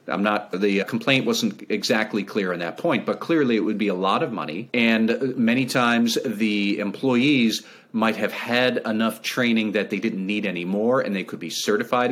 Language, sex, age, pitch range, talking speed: English, male, 40-59, 100-125 Hz, 200 wpm